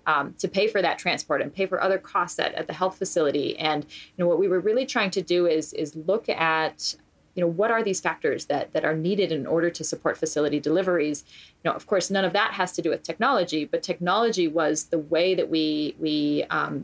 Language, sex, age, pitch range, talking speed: English, female, 30-49, 160-195 Hz, 240 wpm